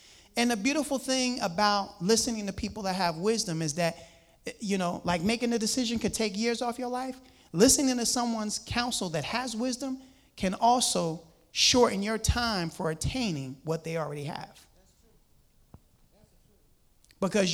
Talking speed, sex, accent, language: 150 wpm, male, American, English